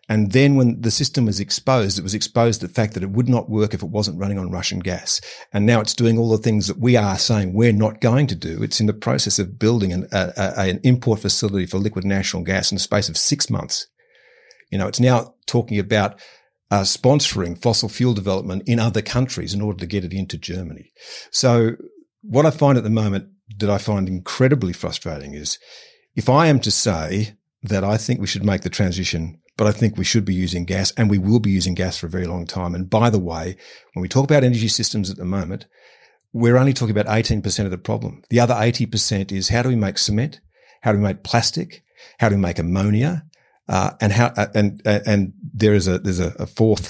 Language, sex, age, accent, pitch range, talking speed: English, male, 50-69, Australian, 95-120 Hz, 235 wpm